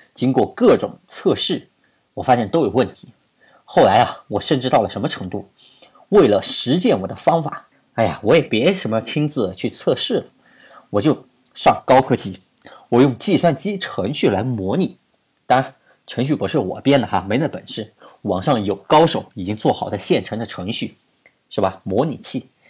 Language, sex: Chinese, male